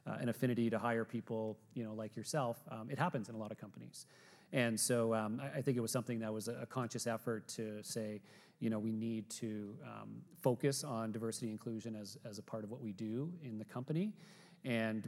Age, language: 40-59, English